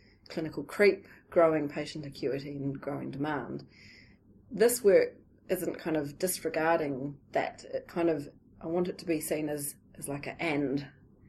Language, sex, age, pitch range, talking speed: English, female, 30-49, 140-175 Hz, 160 wpm